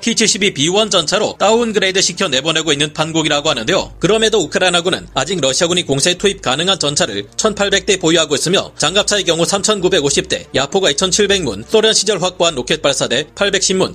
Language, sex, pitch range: Korean, male, 155-200 Hz